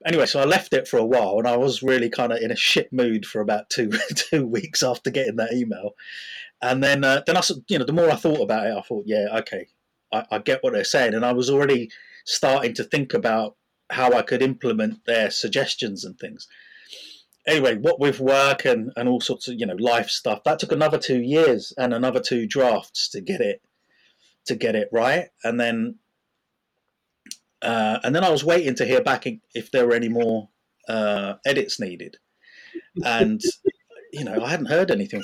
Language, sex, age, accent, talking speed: English, male, 30-49, British, 205 wpm